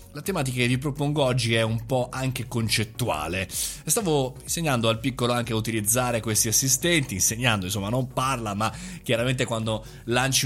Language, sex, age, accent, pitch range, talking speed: Italian, male, 30-49, native, 115-145 Hz, 160 wpm